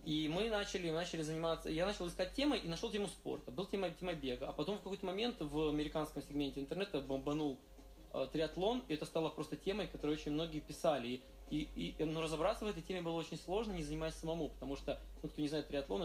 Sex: male